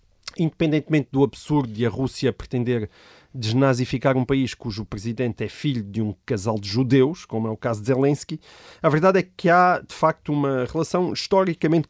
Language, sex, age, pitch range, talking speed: Portuguese, male, 30-49, 125-155 Hz, 175 wpm